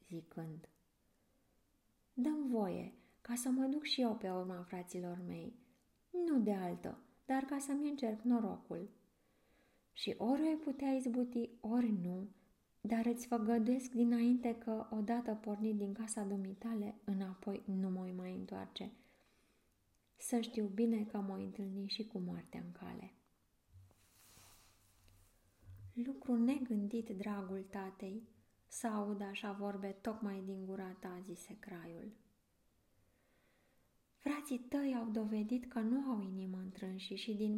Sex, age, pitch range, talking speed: female, 20-39, 190-235 Hz, 125 wpm